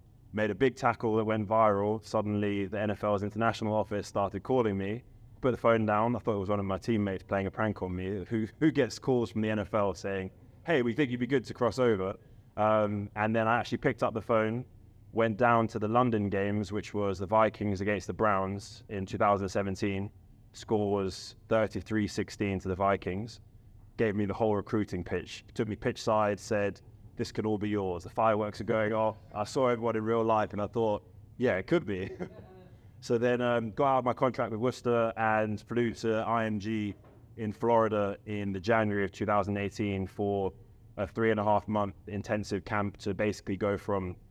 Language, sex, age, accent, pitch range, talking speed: English, male, 20-39, British, 100-115 Hz, 200 wpm